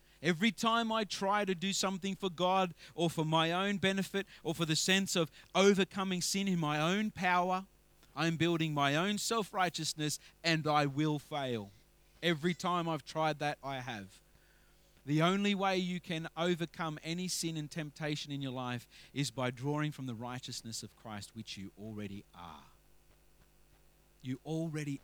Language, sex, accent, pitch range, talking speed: English, male, Australian, 130-180 Hz, 165 wpm